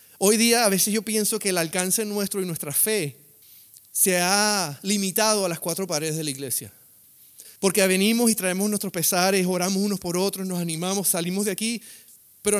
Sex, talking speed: male, 185 wpm